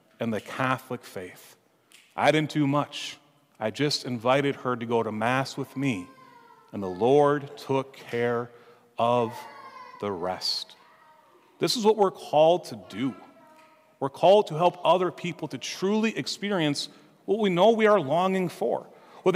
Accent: American